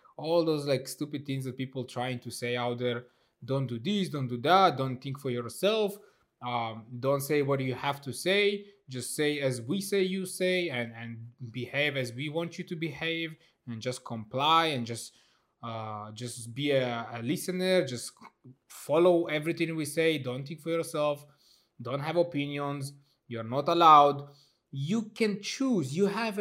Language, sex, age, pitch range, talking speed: English, male, 20-39, 125-170 Hz, 175 wpm